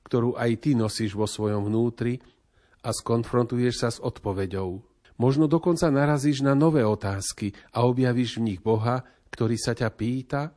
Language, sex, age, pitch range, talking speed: Slovak, male, 40-59, 105-125 Hz, 155 wpm